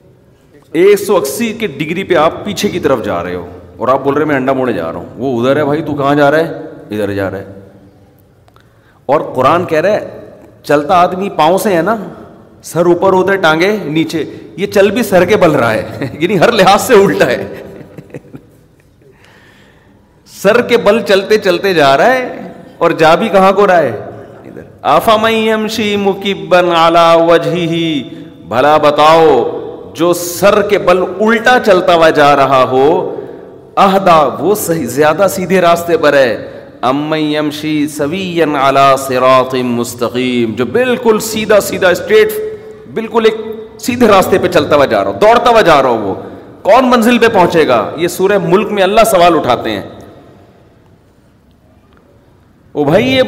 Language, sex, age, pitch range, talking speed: Urdu, male, 40-59, 140-215 Hz, 160 wpm